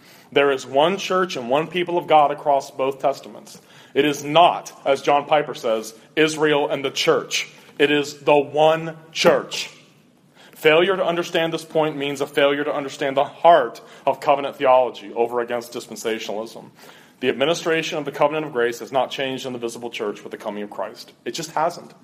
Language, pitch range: English, 135-165 Hz